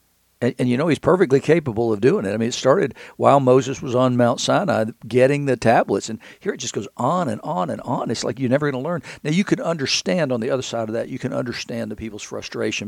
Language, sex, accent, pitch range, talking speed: English, male, American, 110-130 Hz, 260 wpm